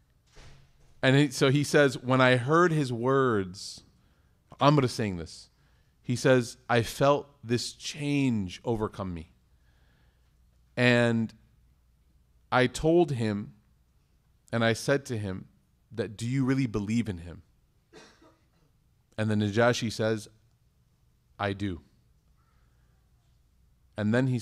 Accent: American